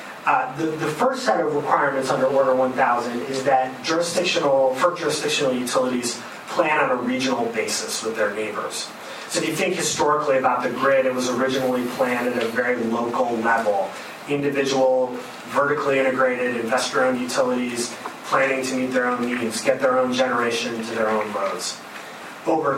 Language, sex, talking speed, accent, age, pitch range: English, male, 160 wpm, American, 30-49, 125-145 Hz